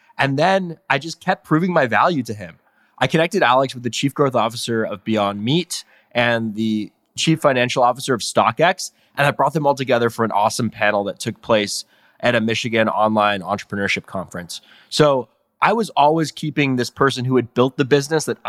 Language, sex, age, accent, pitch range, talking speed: English, male, 20-39, American, 115-150 Hz, 195 wpm